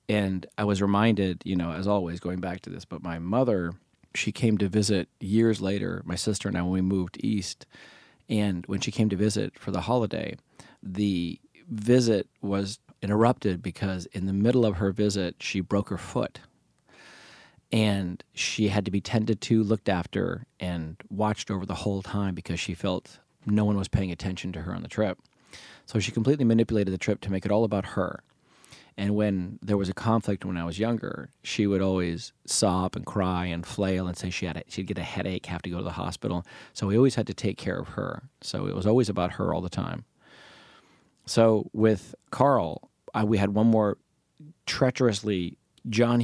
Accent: American